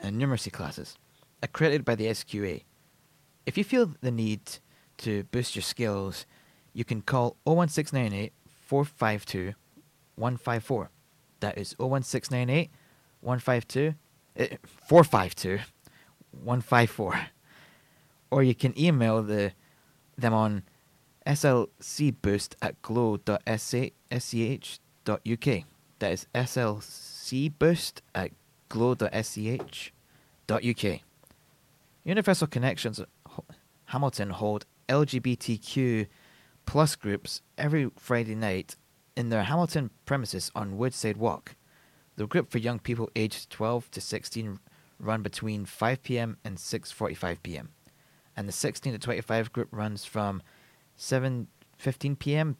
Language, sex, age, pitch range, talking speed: English, male, 20-39, 110-140 Hz, 90 wpm